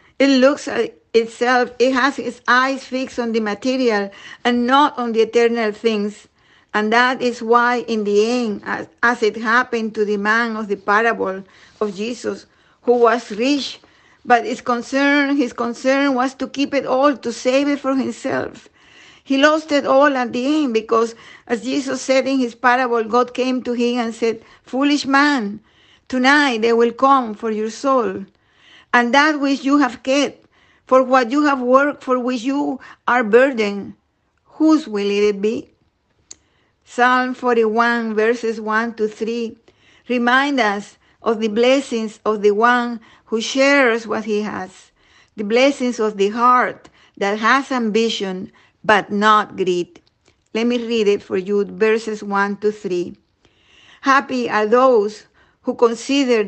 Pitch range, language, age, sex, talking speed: 220-265 Hz, English, 50-69, female, 155 wpm